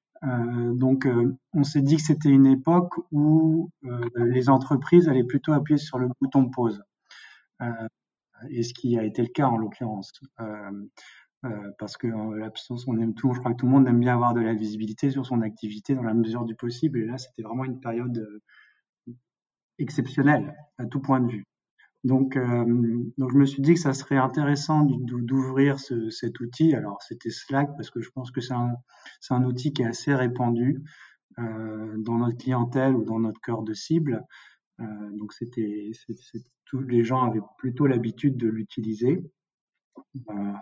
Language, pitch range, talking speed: French, 110-135 Hz, 185 wpm